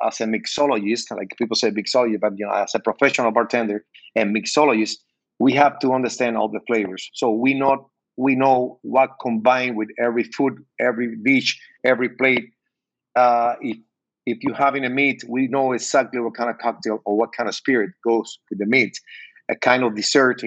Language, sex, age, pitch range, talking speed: English, male, 50-69, 115-135 Hz, 190 wpm